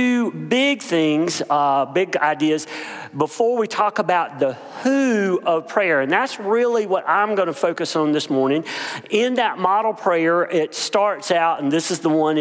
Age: 40-59